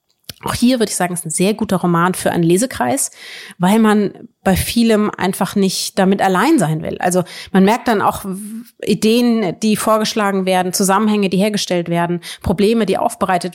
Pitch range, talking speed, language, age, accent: 180-220 Hz, 175 wpm, German, 30-49, German